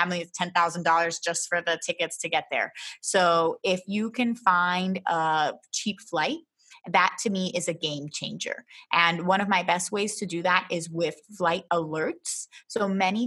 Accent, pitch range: American, 170-205 Hz